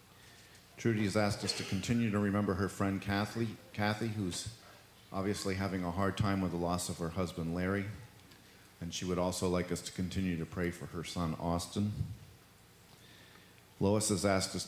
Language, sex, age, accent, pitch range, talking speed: English, male, 50-69, American, 90-105 Hz, 175 wpm